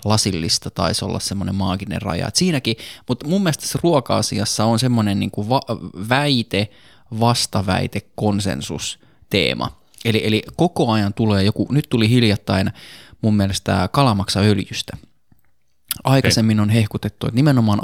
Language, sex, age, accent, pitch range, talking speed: Finnish, male, 20-39, native, 100-120 Hz, 120 wpm